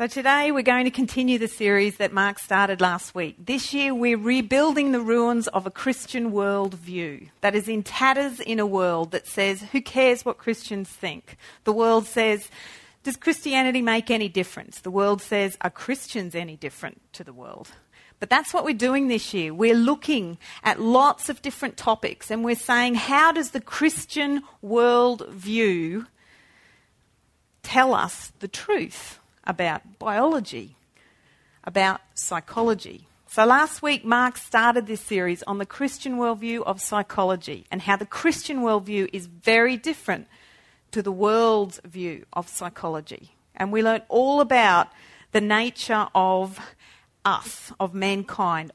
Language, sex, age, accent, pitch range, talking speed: English, female, 40-59, Australian, 195-255 Hz, 150 wpm